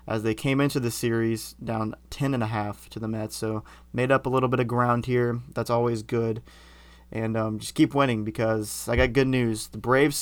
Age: 20-39